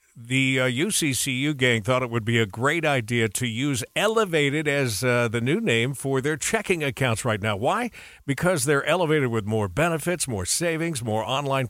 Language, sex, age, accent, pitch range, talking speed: English, male, 50-69, American, 115-150 Hz, 185 wpm